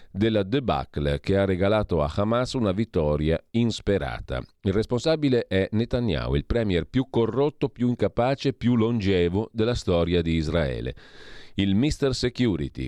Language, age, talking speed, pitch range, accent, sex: Italian, 40-59, 135 wpm, 85-110 Hz, native, male